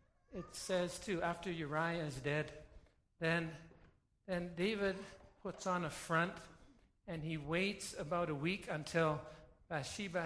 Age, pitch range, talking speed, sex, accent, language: 60-79, 160-210 Hz, 130 wpm, male, American, English